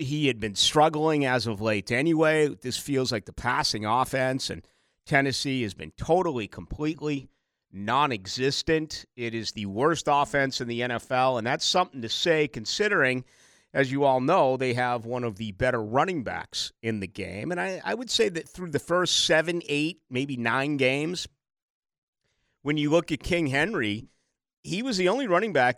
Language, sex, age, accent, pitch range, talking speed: English, male, 50-69, American, 115-150 Hz, 175 wpm